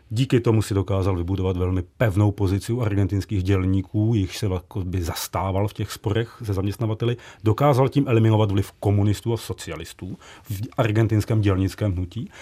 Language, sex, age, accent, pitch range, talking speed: Czech, male, 40-59, native, 100-140 Hz, 145 wpm